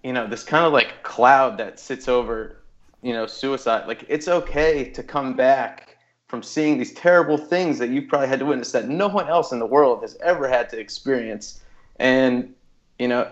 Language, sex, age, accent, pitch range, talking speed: English, male, 30-49, American, 115-145 Hz, 205 wpm